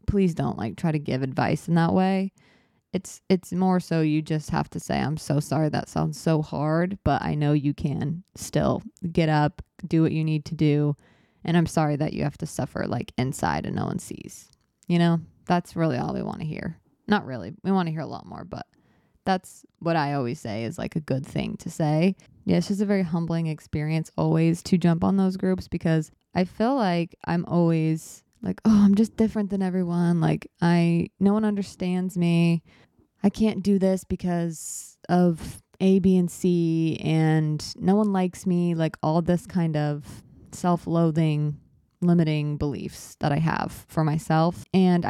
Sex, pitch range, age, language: female, 155-185 Hz, 20-39, English